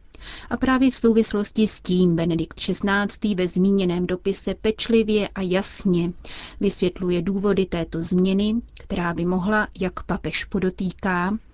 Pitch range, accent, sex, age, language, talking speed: 175-200 Hz, native, female, 30-49, Czech, 125 wpm